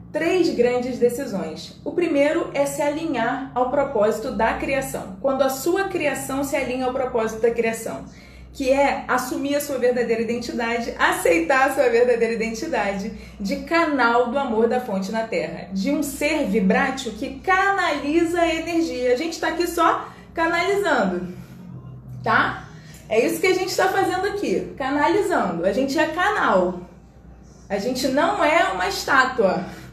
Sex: female